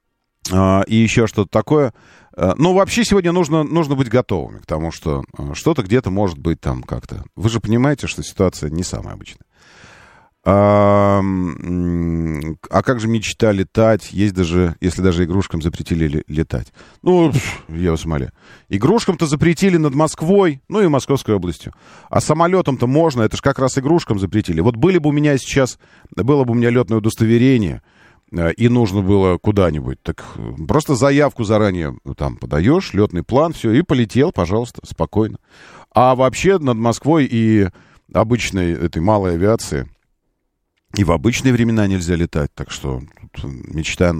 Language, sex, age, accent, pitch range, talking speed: Russian, male, 40-59, native, 85-130 Hz, 150 wpm